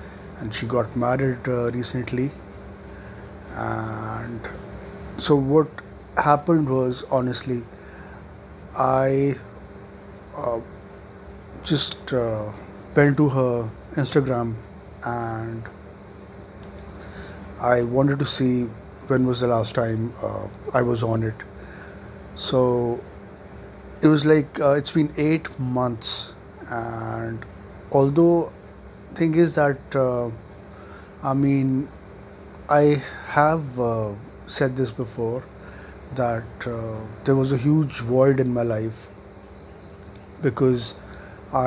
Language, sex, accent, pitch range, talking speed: English, male, Indian, 100-130 Hz, 100 wpm